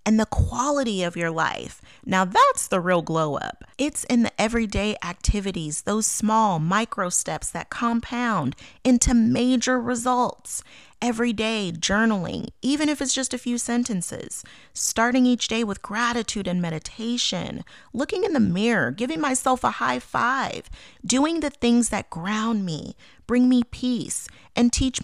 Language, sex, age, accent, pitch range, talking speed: English, female, 30-49, American, 200-245 Hz, 150 wpm